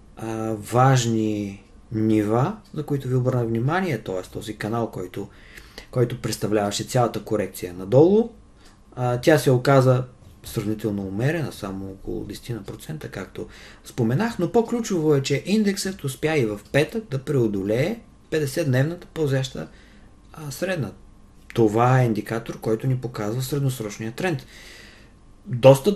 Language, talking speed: Bulgarian, 115 wpm